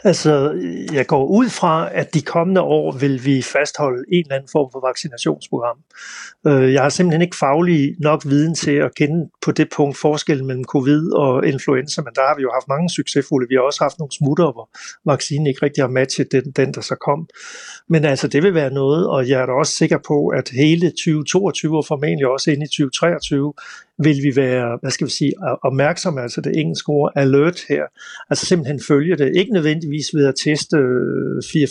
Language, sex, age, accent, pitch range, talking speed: Danish, male, 60-79, native, 135-160 Hz, 200 wpm